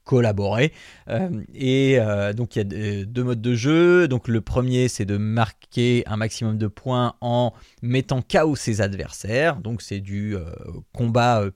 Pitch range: 105-130 Hz